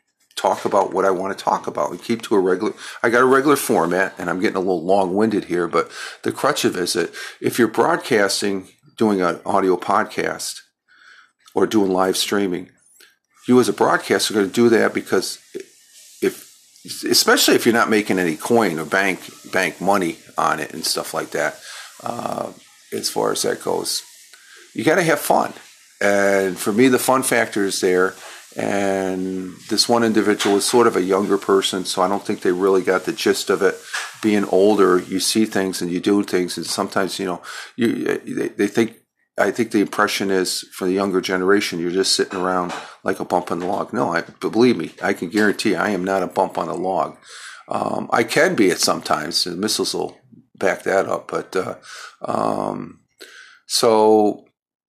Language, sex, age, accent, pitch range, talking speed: English, male, 50-69, American, 95-120 Hz, 195 wpm